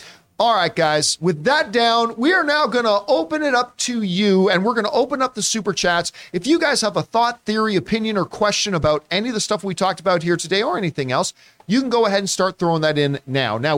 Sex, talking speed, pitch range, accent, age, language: male, 255 wpm, 145-210 Hz, American, 40-59, English